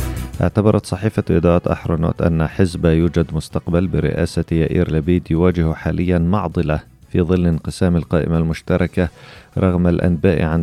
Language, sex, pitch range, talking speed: Arabic, male, 80-90 Hz, 125 wpm